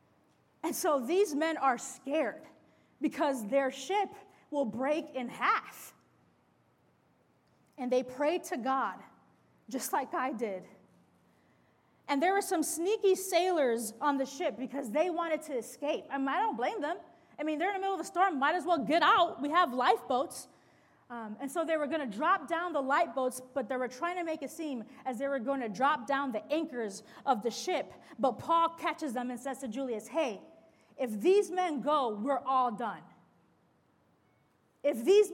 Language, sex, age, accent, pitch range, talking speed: English, female, 30-49, American, 235-310 Hz, 180 wpm